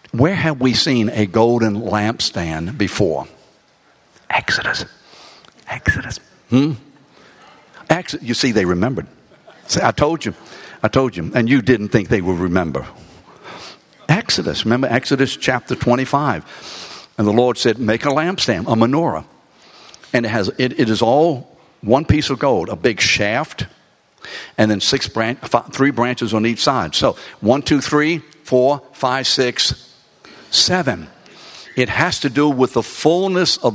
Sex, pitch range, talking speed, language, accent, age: male, 115-145 Hz, 145 wpm, English, American, 60-79